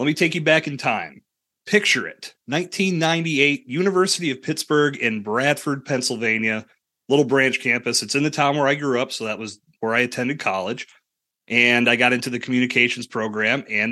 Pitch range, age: 110-145 Hz, 30-49